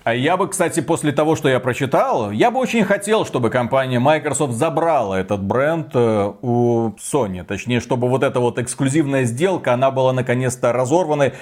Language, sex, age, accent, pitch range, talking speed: Russian, male, 40-59, native, 120-165 Hz, 170 wpm